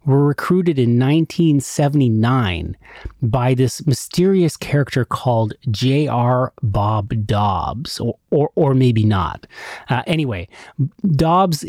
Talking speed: 105 wpm